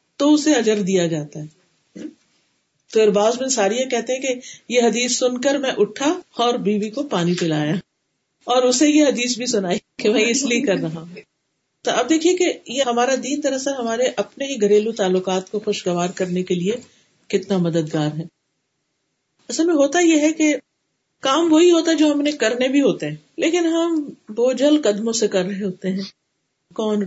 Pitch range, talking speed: 195-275 Hz, 130 wpm